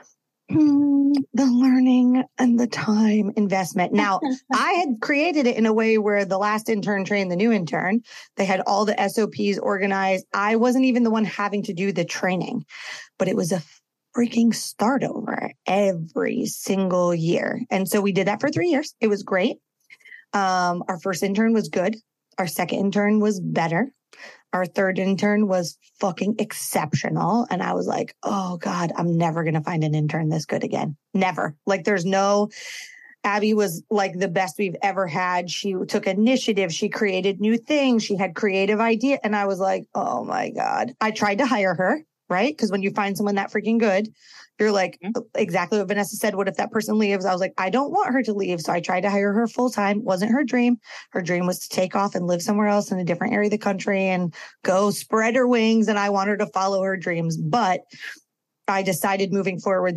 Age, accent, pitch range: 30-49, American, 185-225 Hz